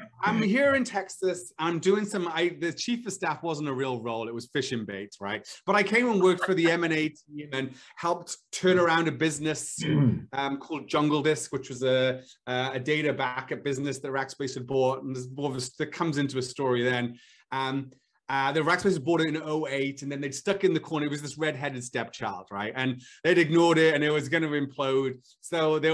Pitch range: 135-185 Hz